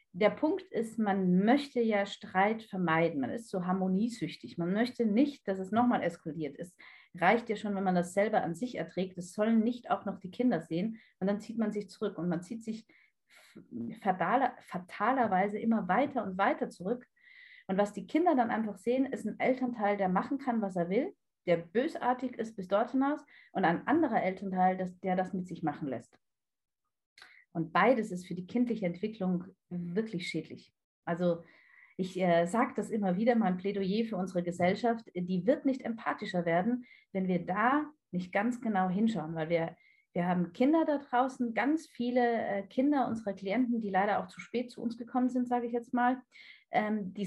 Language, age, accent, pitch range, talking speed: German, 40-59, German, 185-245 Hz, 190 wpm